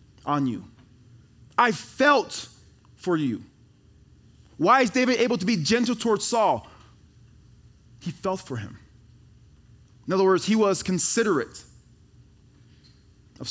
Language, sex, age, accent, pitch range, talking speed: English, male, 20-39, American, 115-180 Hz, 115 wpm